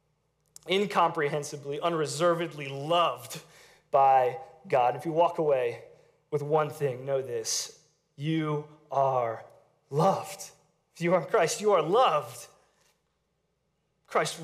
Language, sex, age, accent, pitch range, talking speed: English, male, 30-49, American, 145-200 Hz, 110 wpm